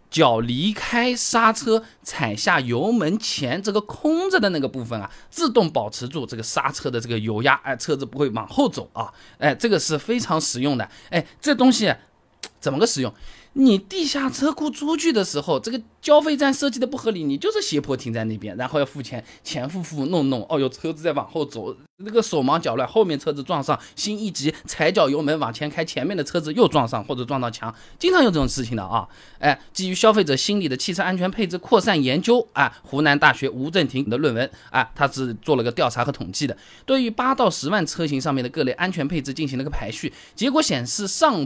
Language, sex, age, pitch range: Chinese, male, 20-39, 130-220 Hz